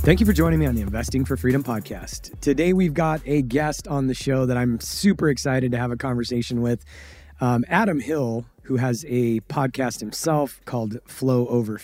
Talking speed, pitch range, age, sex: 200 wpm, 115-135 Hz, 30-49, male